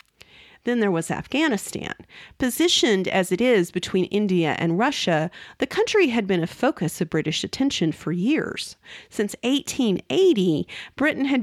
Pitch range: 170-245 Hz